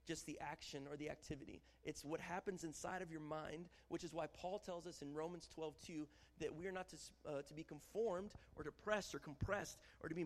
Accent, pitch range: American, 140-195 Hz